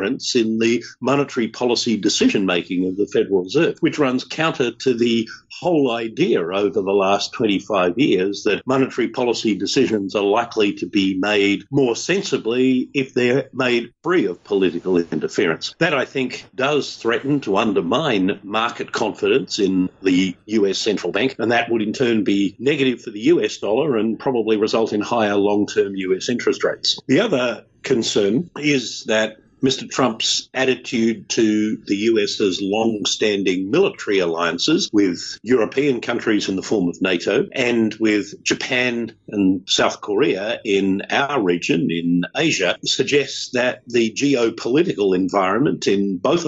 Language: English